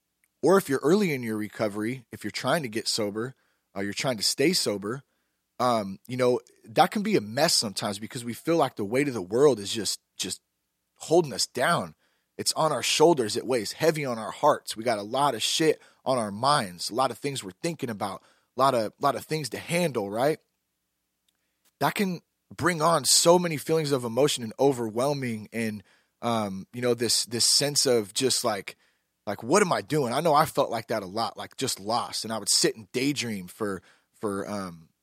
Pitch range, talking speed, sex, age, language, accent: 105-155 Hz, 215 wpm, male, 30-49, English, American